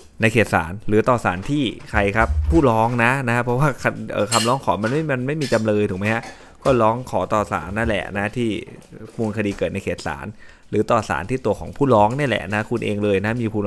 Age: 20-39